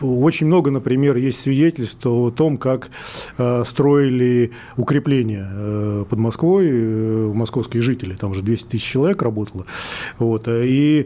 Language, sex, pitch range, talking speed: Russian, male, 115-145 Hz, 130 wpm